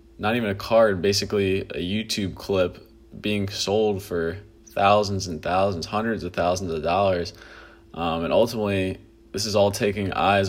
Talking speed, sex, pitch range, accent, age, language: 155 wpm, male, 95-105 Hz, American, 20-39, English